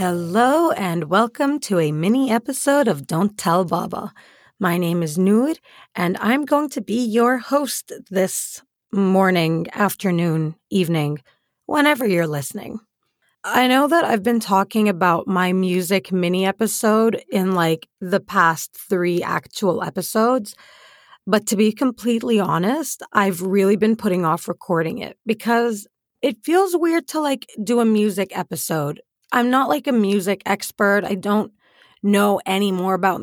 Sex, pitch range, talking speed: female, 180-240 Hz, 145 wpm